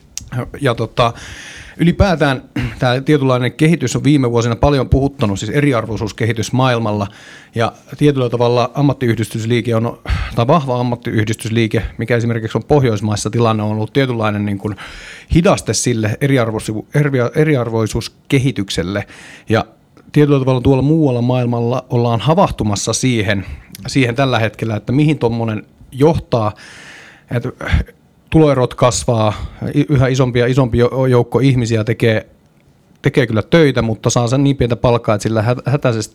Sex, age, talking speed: male, 30-49, 125 wpm